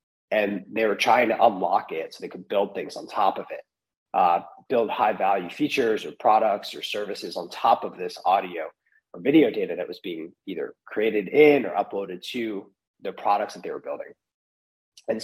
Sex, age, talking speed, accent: male, 30-49, 195 wpm, American